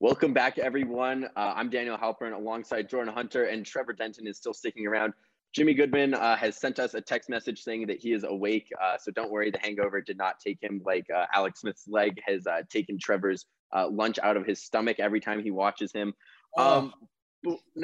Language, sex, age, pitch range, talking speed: English, male, 20-39, 105-130 Hz, 210 wpm